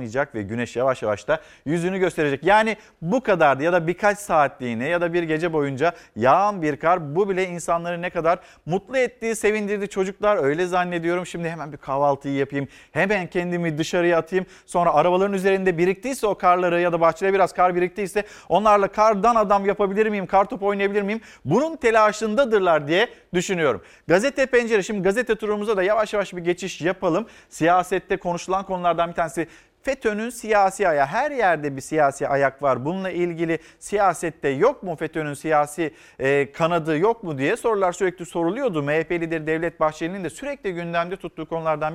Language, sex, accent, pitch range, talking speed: Turkish, male, native, 160-200 Hz, 165 wpm